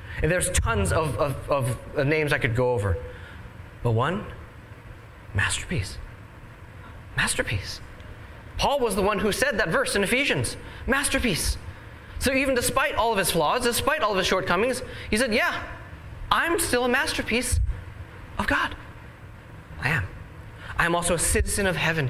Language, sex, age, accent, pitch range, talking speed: English, male, 20-39, American, 100-150 Hz, 150 wpm